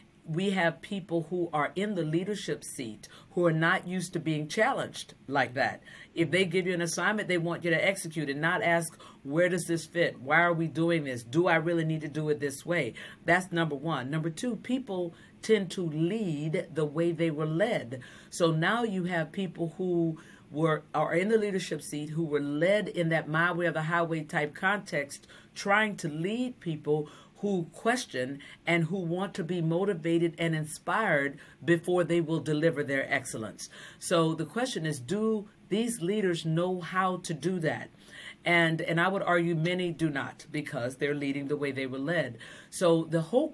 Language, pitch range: English, 150-180 Hz